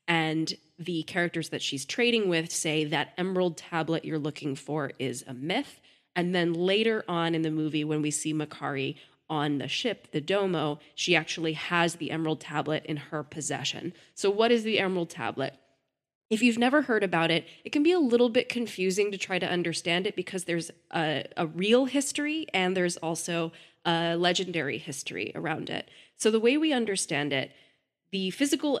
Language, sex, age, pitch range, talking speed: English, female, 20-39, 155-190 Hz, 185 wpm